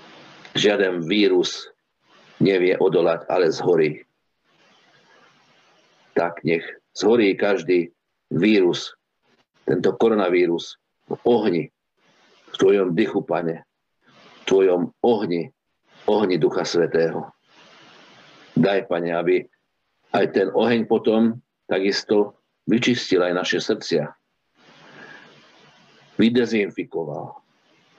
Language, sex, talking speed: Slovak, male, 80 wpm